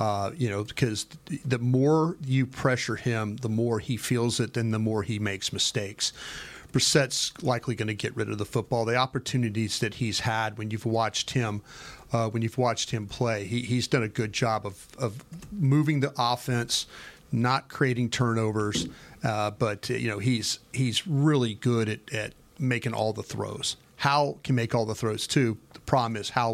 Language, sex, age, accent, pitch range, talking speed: English, male, 40-59, American, 110-135 Hz, 190 wpm